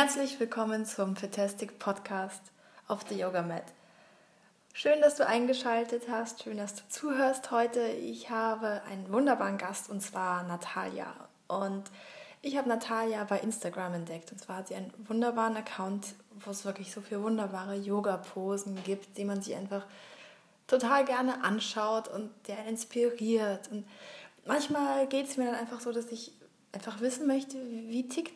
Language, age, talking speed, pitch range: English, 20-39, 150 wpm, 200-245 Hz